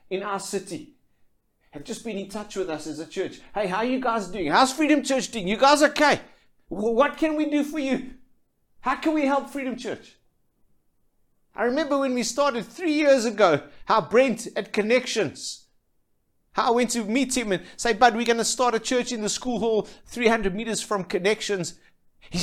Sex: male